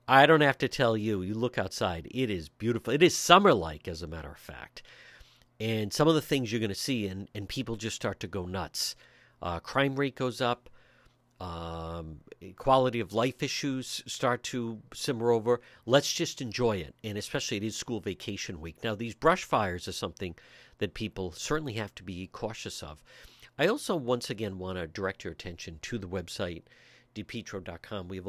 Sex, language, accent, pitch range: male, English, American, 95-120 Hz